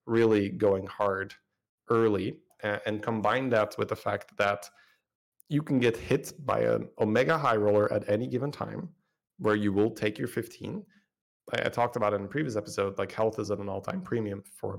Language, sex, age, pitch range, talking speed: English, male, 30-49, 100-120 Hz, 185 wpm